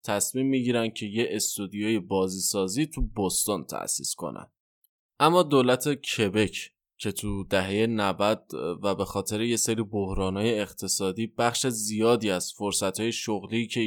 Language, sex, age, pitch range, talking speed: Persian, male, 20-39, 100-135 Hz, 125 wpm